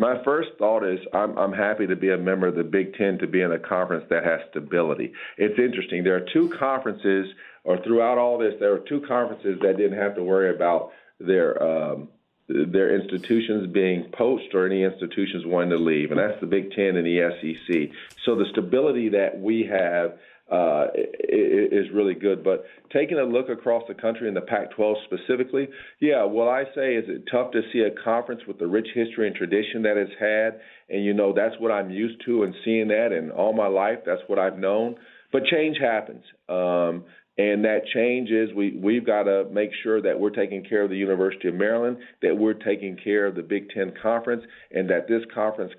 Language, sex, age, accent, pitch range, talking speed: English, male, 50-69, American, 95-115 Hz, 205 wpm